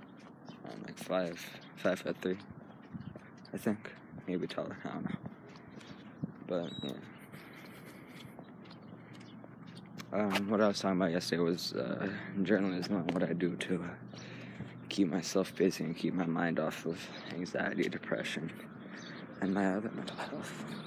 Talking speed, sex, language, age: 125 wpm, male, English, 20-39